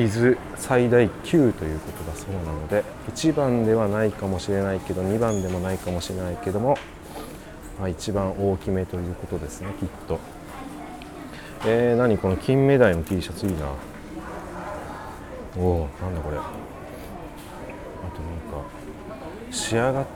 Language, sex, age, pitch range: Japanese, male, 30-49, 85-130 Hz